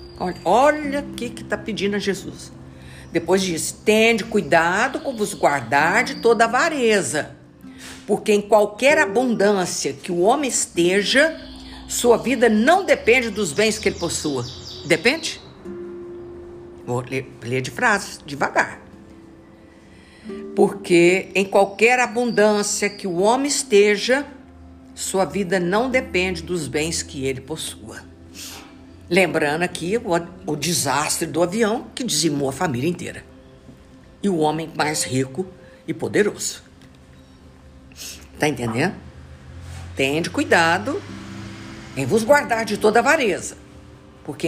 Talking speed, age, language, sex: 120 wpm, 60-79, Portuguese, female